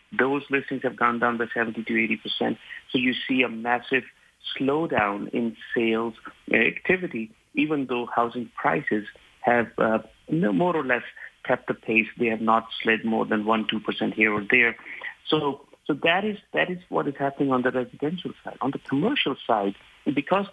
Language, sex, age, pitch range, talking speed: English, male, 50-69, 115-135 Hz, 180 wpm